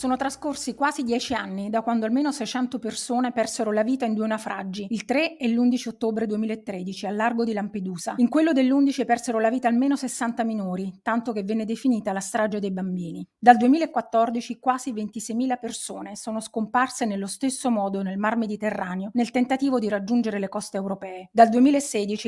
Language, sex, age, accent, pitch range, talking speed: Italian, female, 30-49, native, 210-245 Hz, 175 wpm